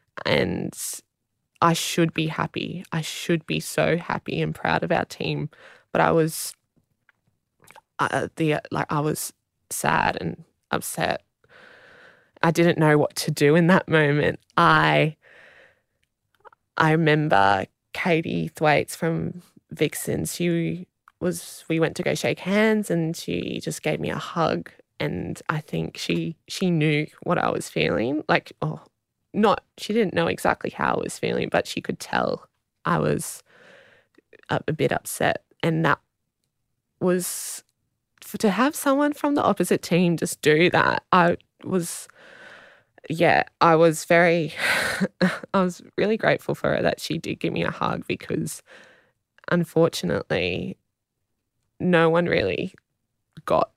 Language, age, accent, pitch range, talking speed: English, 20-39, Australian, 150-185 Hz, 140 wpm